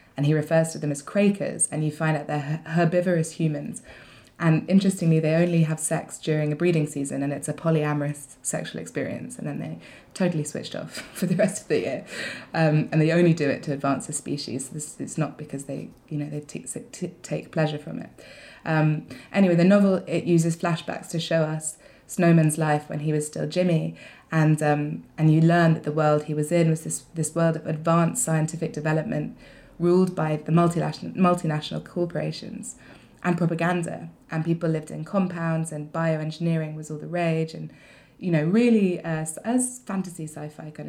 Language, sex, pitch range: English, female, 155-170 Hz